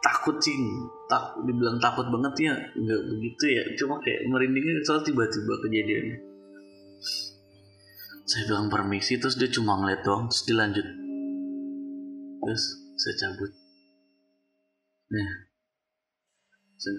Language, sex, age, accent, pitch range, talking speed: Indonesian, male, 20-39, native, 105-155 Hz, 110 wpm